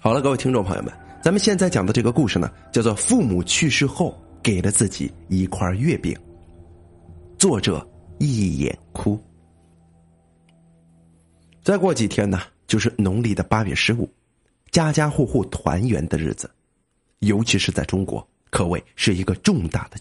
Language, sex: Chinese, male